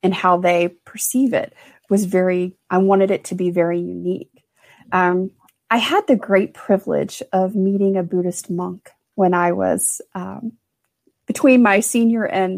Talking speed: 155 wpm